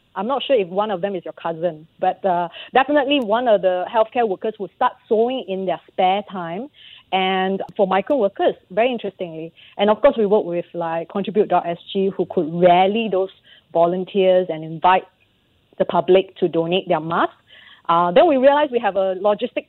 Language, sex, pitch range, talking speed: English, female, 180-215 Hz, 185 wpm